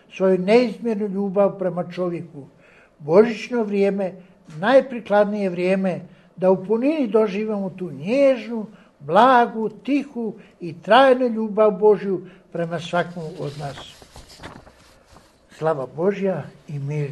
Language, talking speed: Croatian, 100 wpm